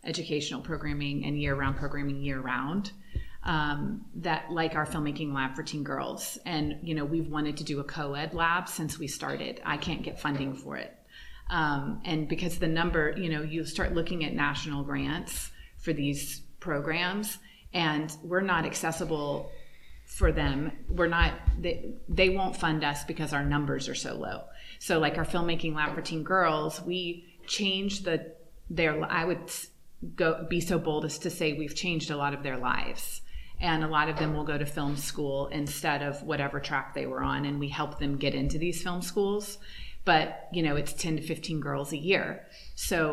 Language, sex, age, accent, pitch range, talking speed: English, female, 30-49, American, 145-165 Hz, 185 wpm